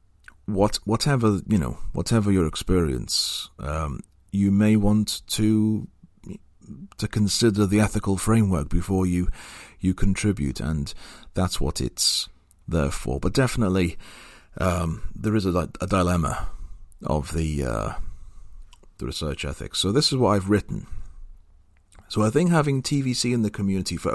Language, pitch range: English, 75-100 Hz